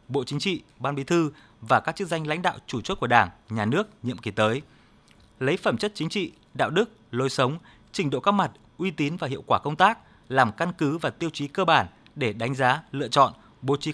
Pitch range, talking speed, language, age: 125-175 Hz, 240 wpm, Vietnamese, 20-39